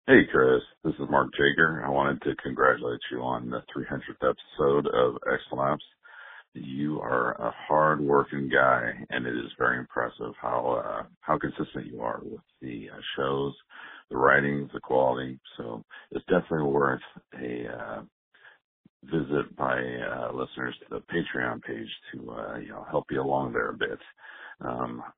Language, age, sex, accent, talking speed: English, 50-69, male, American, 155 wpm